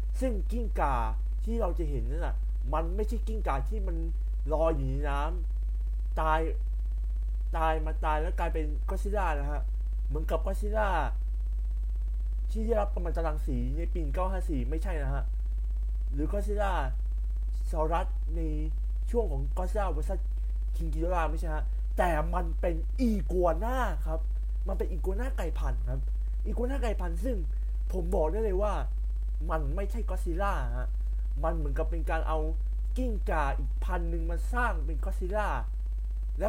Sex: male